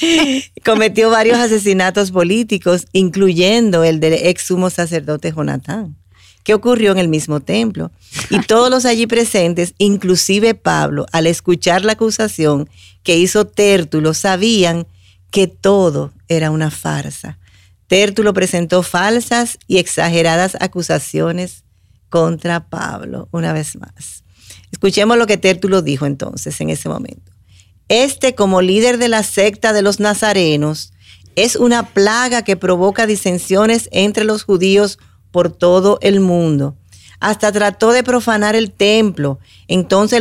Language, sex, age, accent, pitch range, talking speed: Spanish, female, 40-59, American, 165-215 Hz, 130 wpm